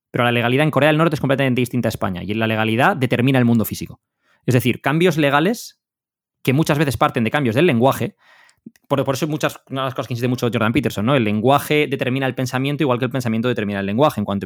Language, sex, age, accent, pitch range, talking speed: Spanish, male, 20-39, Spanish, 110-155 Hz, 245 wpm